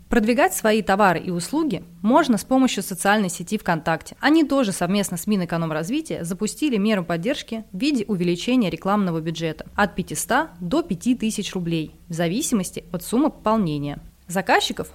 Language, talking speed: Russian, 140 wpm